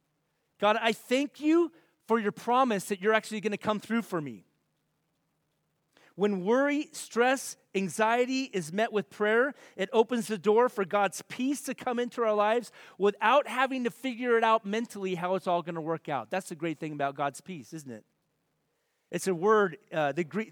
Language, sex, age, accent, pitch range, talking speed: English, male, 40-59, American, 175-235 Hz, 185 wpm